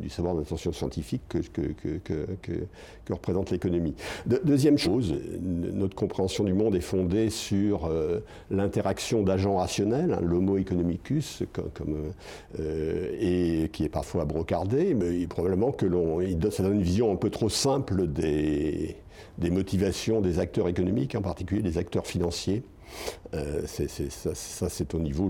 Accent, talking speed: French, 170 wpm